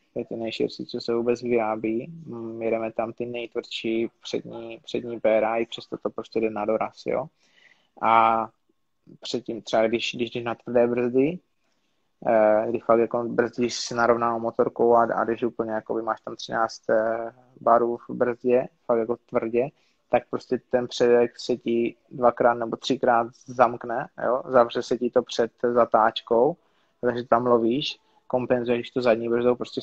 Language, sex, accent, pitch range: Czech, male, native, 115-125 Hz